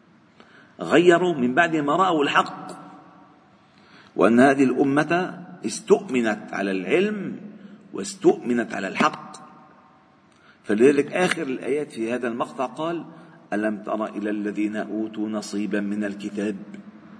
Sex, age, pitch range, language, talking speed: male, 50-69, 110-155 Hz, Arabic, 105 wpm